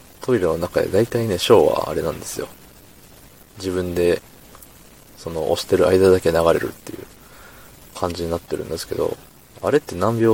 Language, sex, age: Japanese, male, 20-39